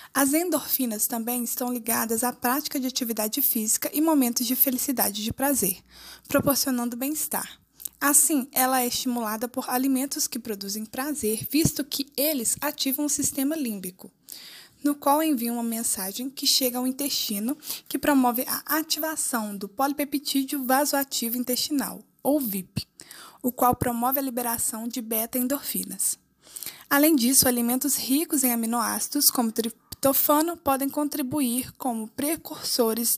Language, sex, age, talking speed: Portuguese, female, 20-39, 135 wpm